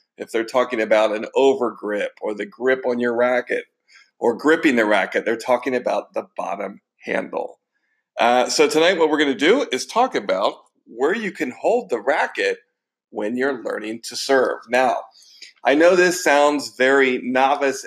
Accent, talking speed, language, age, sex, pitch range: American, 170 wpm, English, 40-59, male, 120-155 Hz